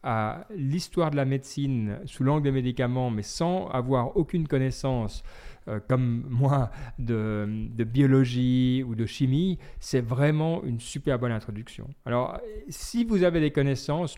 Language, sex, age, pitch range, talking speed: French, male, 40-59, 115-145 Hz, 150 wpm